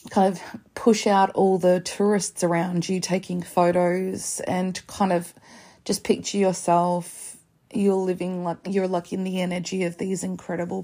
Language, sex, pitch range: English, female, 170-190 Hz